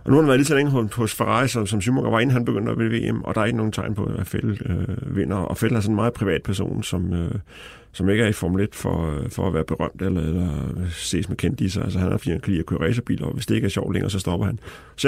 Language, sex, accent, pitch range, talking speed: Danish, male, native, 95-115 Hz, 305 wpm